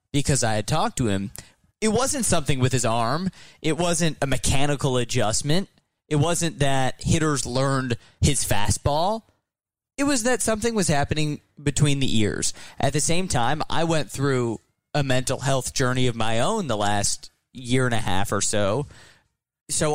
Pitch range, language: 120-155 Hz, English